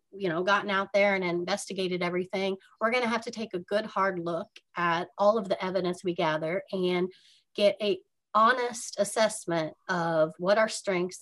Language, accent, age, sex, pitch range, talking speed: English, American, 30-49, female, 180-210 Hz, 180 wpm